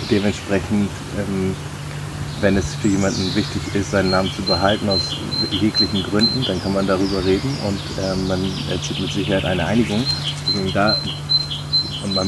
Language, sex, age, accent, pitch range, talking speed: German, male, 30-49, German, 100-125 Hz, 150 wpm